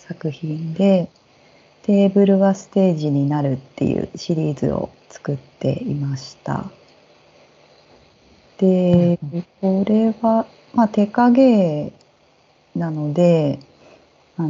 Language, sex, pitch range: Japanese, female, 150-205 Hz